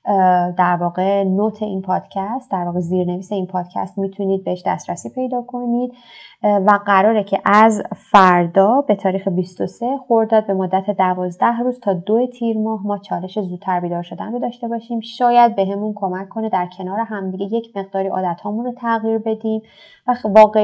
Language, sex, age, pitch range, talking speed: Persian, female, 20-39, 190-220 Hz, 165 wpm